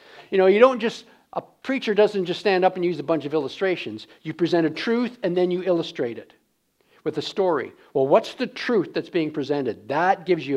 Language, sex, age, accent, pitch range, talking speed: English, male, 50-69, American, 170-240 Hz, 220 wpm